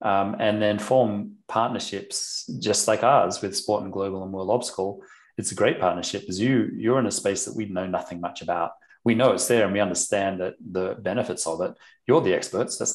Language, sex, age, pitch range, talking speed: English, male, 30-49, 95-115 Hz, 220 wpm